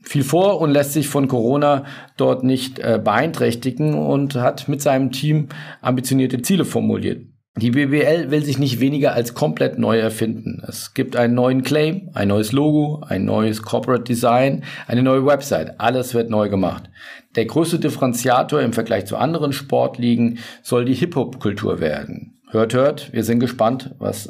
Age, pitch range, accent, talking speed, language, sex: 50-69, 115-145 Hz, German, 165 wpm, German, male